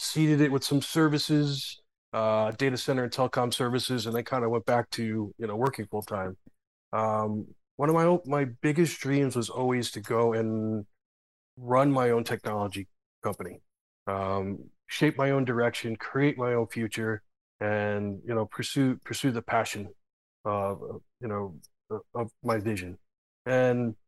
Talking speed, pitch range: 155 wpm, 110-135 Hz